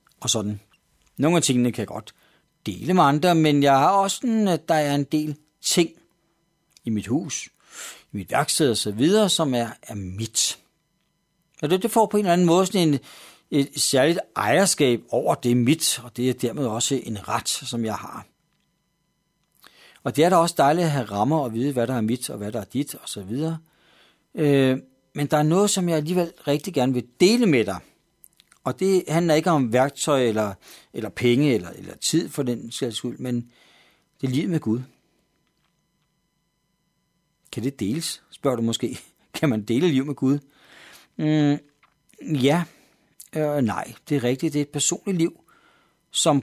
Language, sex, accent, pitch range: Danish, male, native, 125-165 Hz